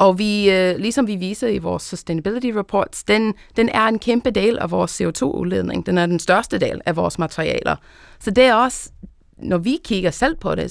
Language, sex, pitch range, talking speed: Danish, female, 175-220 Hz, 195 wpm